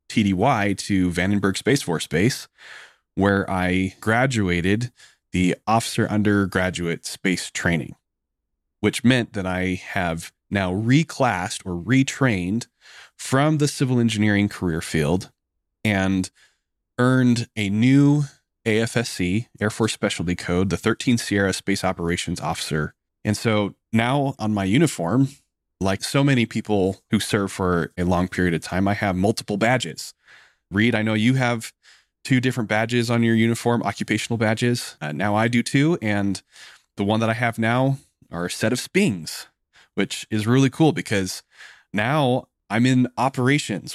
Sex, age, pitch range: male, 20-39, 95-125 Hz